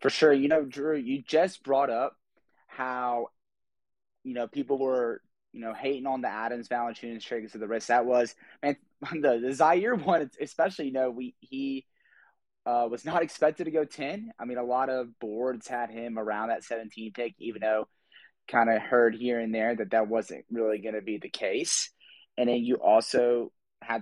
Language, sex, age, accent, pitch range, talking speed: English, male, 20-39, American, 110-125 Hz, 195 wpm